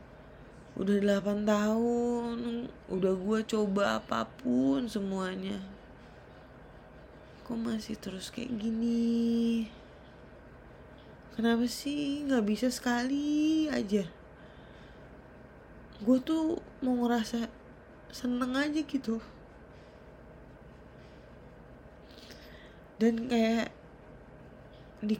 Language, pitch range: Turkish, 190-240 Hz